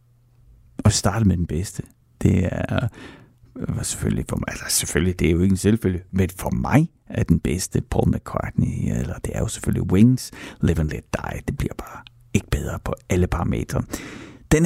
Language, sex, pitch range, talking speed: Danish, male, 90-115 Hz, 185 wpm